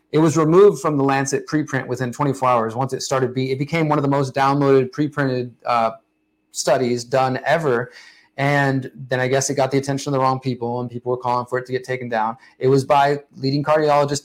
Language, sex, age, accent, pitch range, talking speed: English, male, 30-49, American, 125-145 Hz, 220 wpm